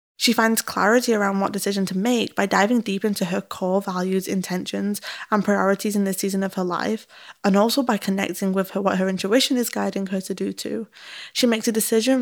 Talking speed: 210 wpm